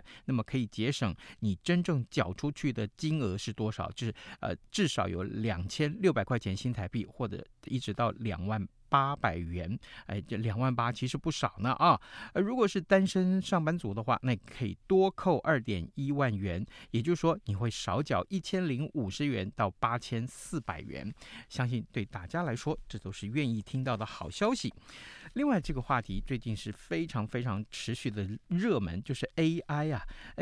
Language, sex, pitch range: Chinese, male, 110-155 Hz